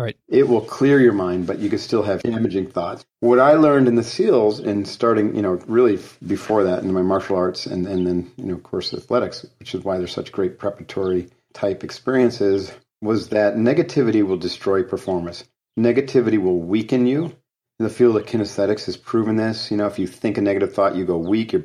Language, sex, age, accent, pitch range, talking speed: English, male, 40-59, American, 95-120 Hz, 210 wpm